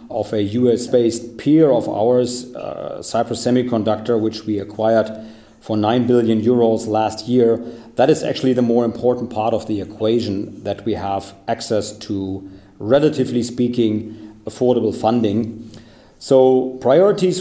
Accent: German